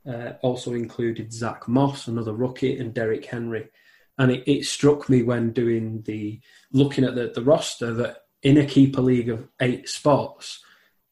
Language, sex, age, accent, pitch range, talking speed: English, male, 20-39, British, 110-130 Hz, 165 wpm